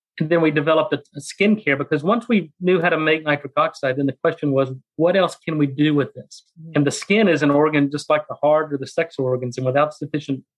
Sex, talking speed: male, 250 wpm